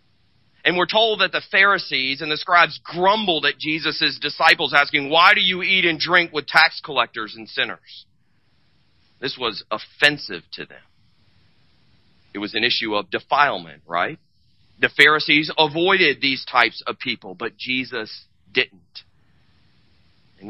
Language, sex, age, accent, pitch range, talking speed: English, male, 40-59, American, 105-150 Hz, 140 wpm